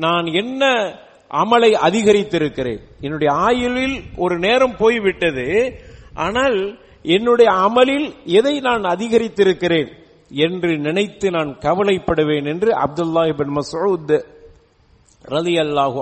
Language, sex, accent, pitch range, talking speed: English, male, Indian, 150-215 Hz, 100 wpm